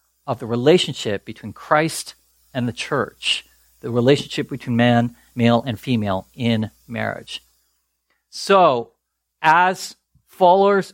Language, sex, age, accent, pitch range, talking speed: English, male, 50-69, American, 125-170 Hz, 110 wpm